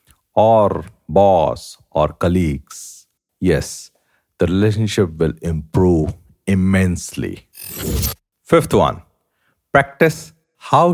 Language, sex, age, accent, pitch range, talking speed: English, male, 50-69, Indian, 95-135 Hz, 75 wpm